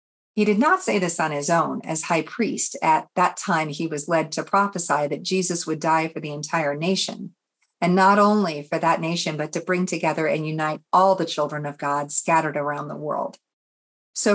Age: 40-59